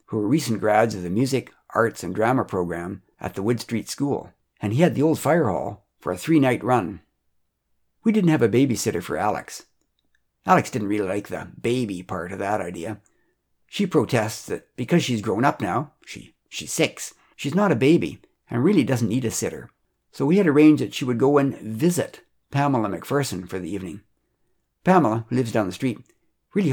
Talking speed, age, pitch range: 195 wpm, 60-79, 100-140 Hz